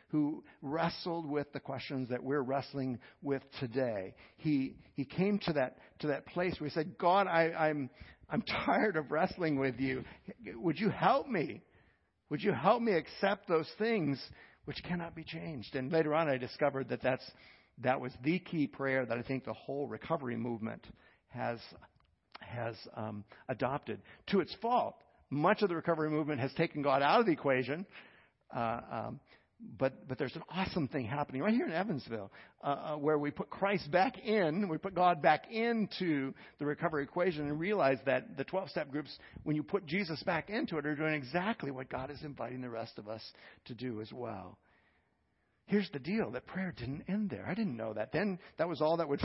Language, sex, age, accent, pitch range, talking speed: English, male, 60-79, American, 130-170 Hz, 190 wpm